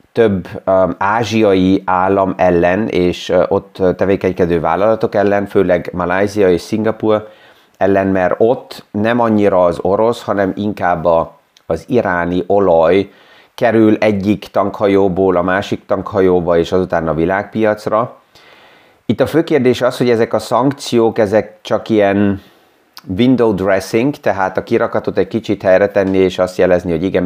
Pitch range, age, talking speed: 90-105 Hz, 30-49, 135 wpm